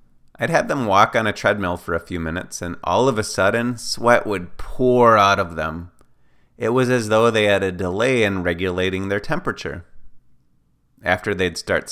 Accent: American